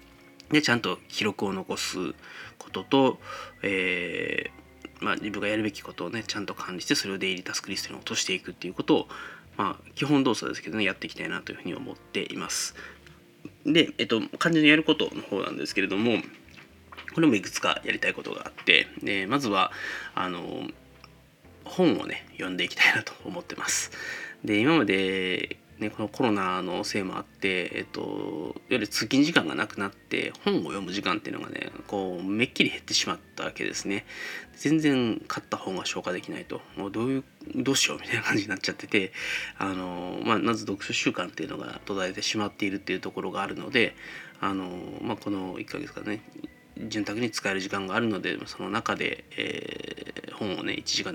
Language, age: Japanese, 20-39